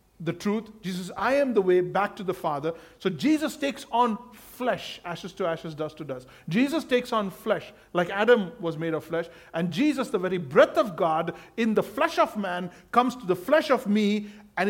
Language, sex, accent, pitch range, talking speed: English, male, Indian, 155-210 Hz, 210 wpm